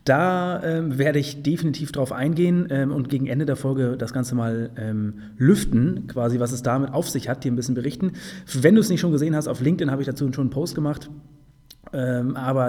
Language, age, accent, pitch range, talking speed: German, 30-49, German, 130-160 Hz, 220 wpm